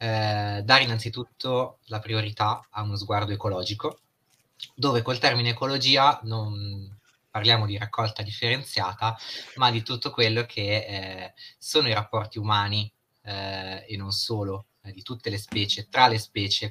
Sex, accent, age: male, native, 20-39